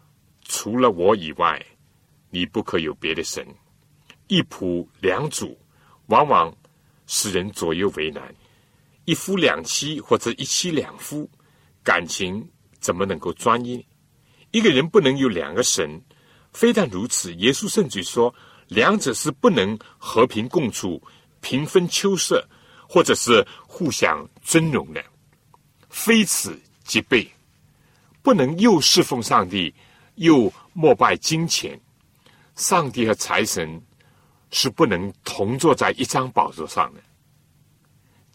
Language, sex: Chinese, male